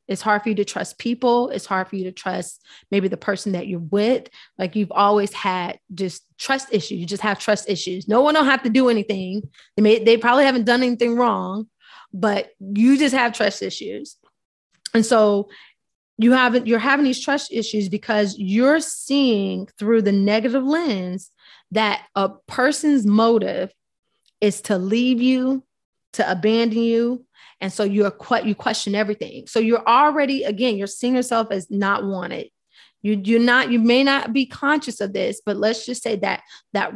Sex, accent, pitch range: female, American, 200-240 Hz